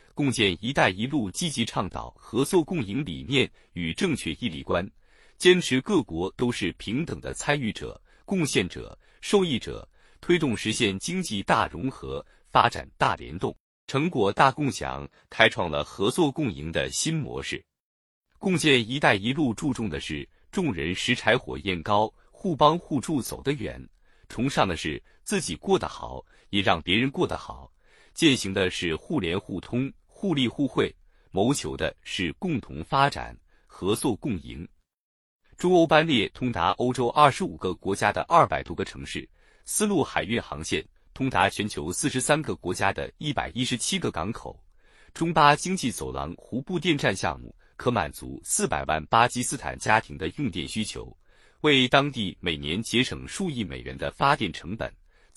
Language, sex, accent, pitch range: Chinese, male, native, 90-145 Hz